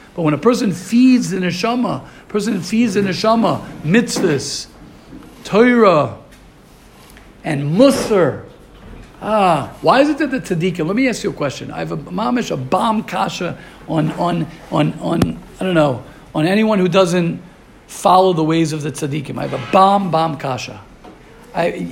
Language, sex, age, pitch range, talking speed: English, male, 50-69, 170-230 Hz, 165 wpm